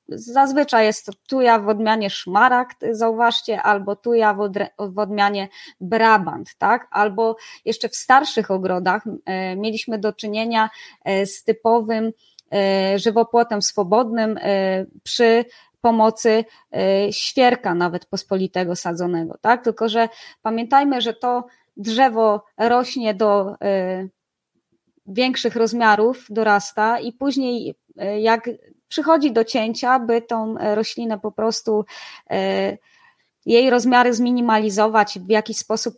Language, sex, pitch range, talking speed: Polish, female, 210-250 Hz, 105 wpm